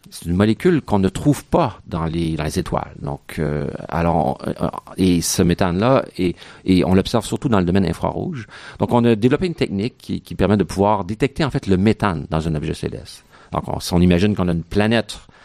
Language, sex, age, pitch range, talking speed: French, male, 50-69, 85-110 Hz, 220 wpm